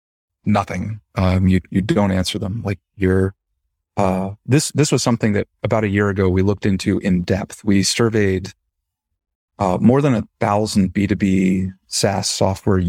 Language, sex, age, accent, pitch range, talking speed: English, male, 30-49, American, 95-110 Hz, 160 wpm